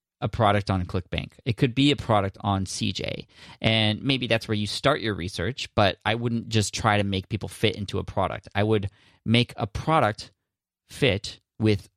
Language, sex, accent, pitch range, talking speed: English, male, American, 95-115 Hz, 190 wpm